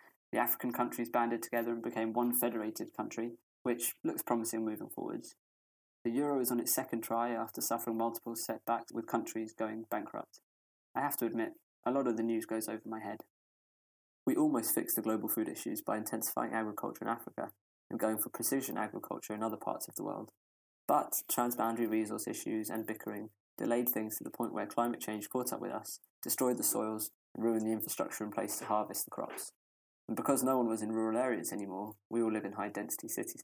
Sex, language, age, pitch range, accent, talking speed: male, English, 20-39, 105-115 Hz, British, 200 wpm